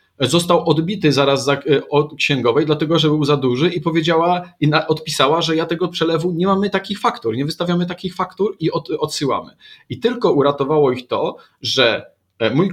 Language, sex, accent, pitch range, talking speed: Polish, male, native, 125-170 Hz, 165 wpm